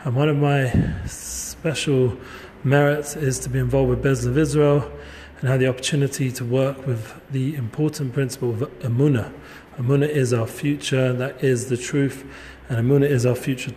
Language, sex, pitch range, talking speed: English, male, 120-140 Hz, 170 wpm